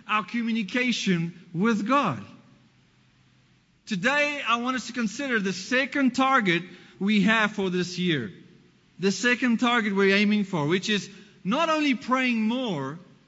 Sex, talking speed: male, 140 wpm